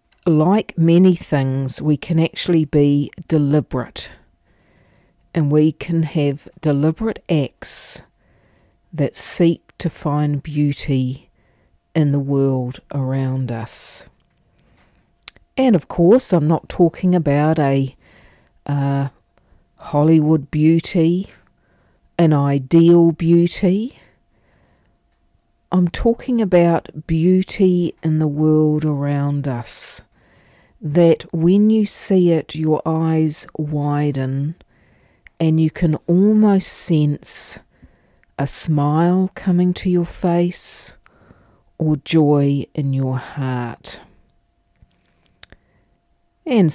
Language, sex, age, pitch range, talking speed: English, female, 50-69, 140-170 Hz, 90 wpm